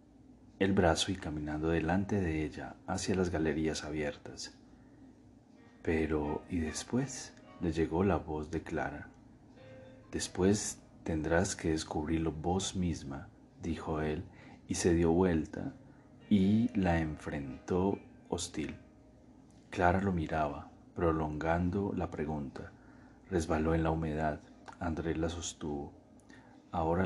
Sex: male